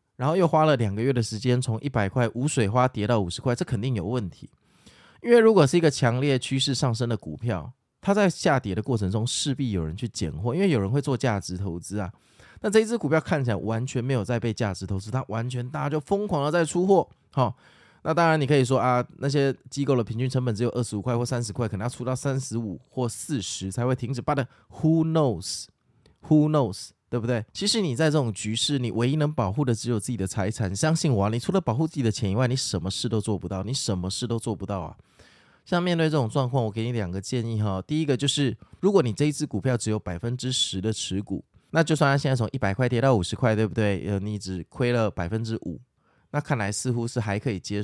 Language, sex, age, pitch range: Chinese, male, 20-39, 105-135 Hz